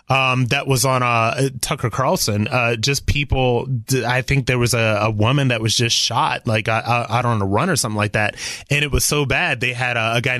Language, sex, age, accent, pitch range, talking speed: English, male, 30-49, American, 120-150 Hz, 230 wpm